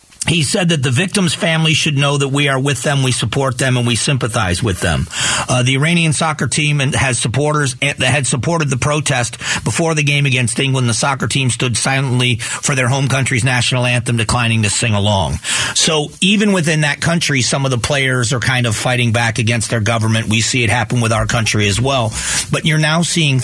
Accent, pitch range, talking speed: American, 115-150 Hz, 210 wpm